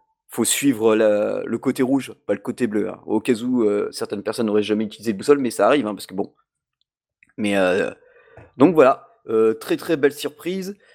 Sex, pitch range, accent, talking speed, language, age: male, 105-140 Hz, French, 210 wpm, French, 30-49